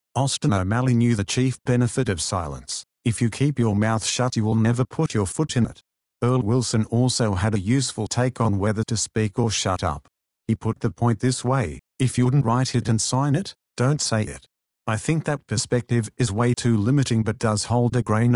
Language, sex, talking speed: English, male, 215 wpm